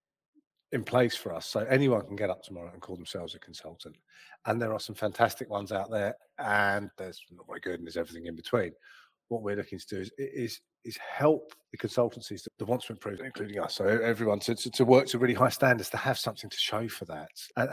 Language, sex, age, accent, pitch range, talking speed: English, male, 30-49, British, 95-115 Hz, 235 wpm